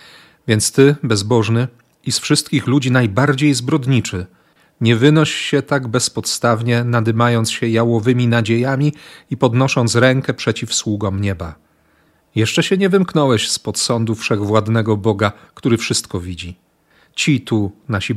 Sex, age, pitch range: male, 40-59, 110-140 Hz